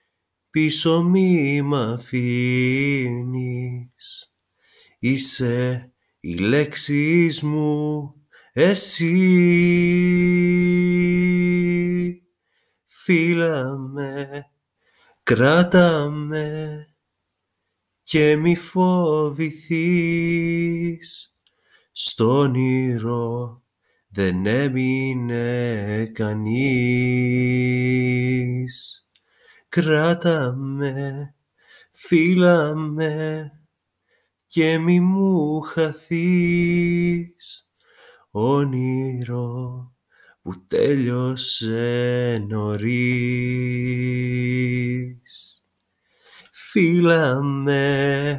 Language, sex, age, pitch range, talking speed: Greek, male, 30-49, 125-170 Hz, 40 wpm